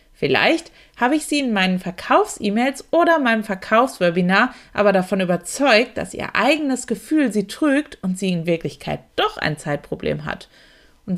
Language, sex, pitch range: German, female, 195-295 Hz